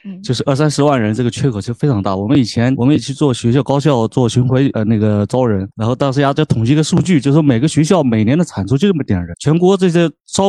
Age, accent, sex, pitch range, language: 30-49, native, male, 115-160 Hz, Chinese